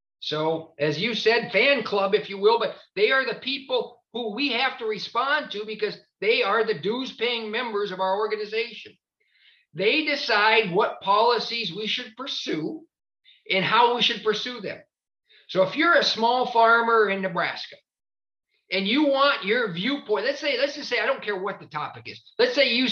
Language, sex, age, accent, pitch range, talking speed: English, male, 50-69, American, 195-270 Hz, 185 wpm